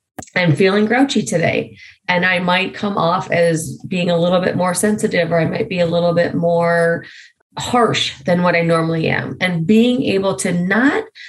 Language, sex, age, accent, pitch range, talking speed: English, female, 30-49, American, 165-205 Hz, 185 wpm